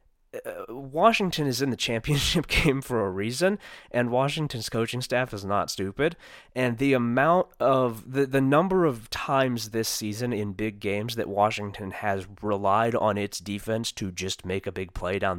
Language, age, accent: English, 30-49, American